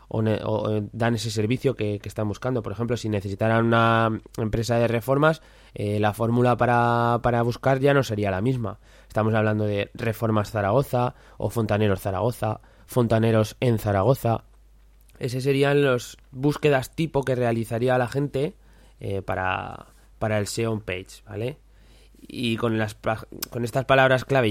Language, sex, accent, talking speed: Spanish, male, Spanish, 150 wpm